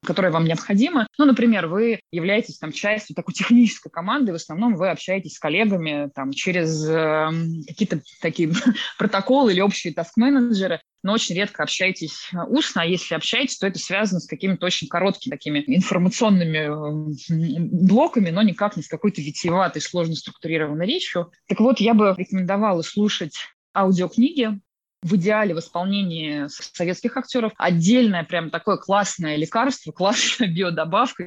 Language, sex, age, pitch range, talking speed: Russian, female, 20-39, 160-205 Hz, 140 wpm